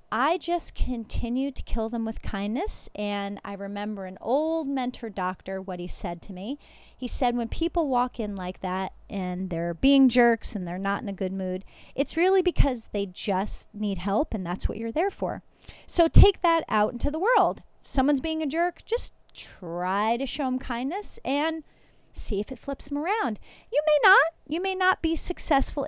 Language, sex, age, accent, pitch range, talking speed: Russian, female, 30-49, American, 210-305 Hz, 195 wpm